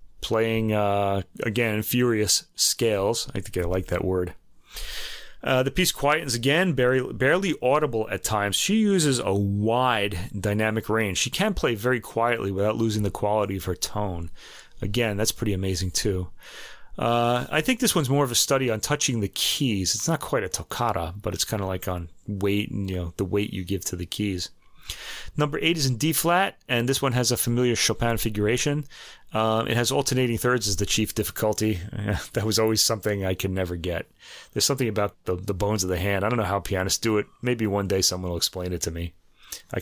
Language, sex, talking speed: English, male, 205 wpm